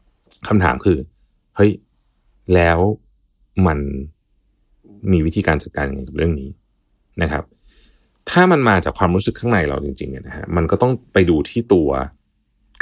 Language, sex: Thai, male